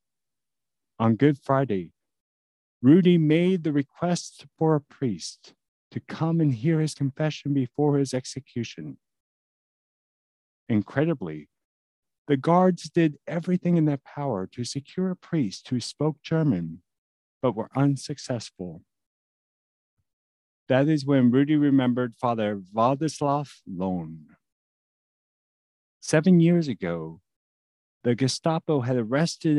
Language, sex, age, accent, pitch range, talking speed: English, male, 50-69, American, 95-155 Hz, 105 wpm